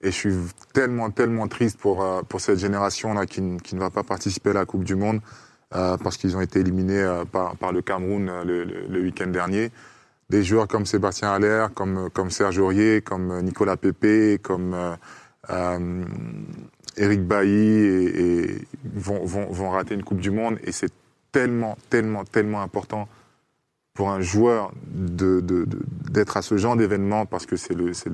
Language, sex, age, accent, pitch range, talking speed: French, male, 20-39, French, 95-110 Hz, 185 wpm